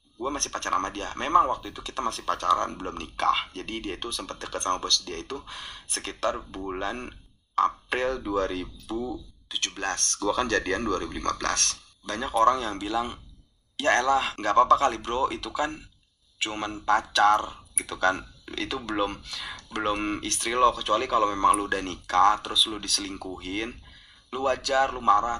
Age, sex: 20-39, male